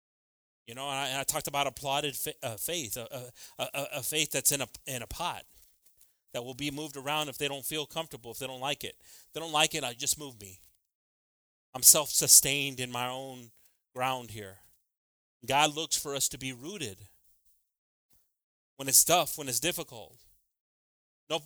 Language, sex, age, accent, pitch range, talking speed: English, male, 30-49, American, 125-155 Hz, 195 wpm